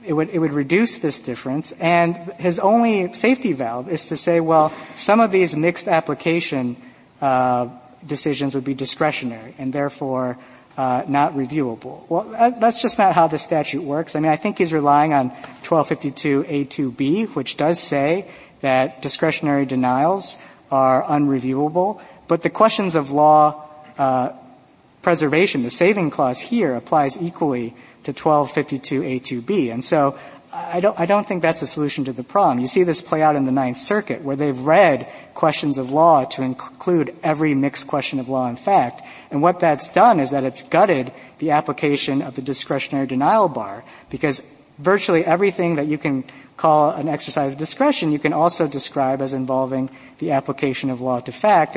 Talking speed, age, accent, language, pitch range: 170 wpm, 50-69, American, English, 135-165 Hz